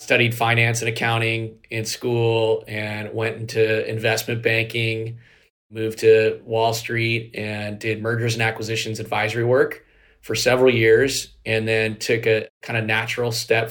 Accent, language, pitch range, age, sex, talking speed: American, English, 110-120 Hz, 30-49, male, 145 wpm